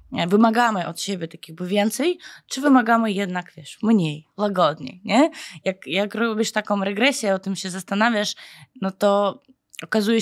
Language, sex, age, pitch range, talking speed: Polish, female, 20-39, 170-205 Hz, 145 wpm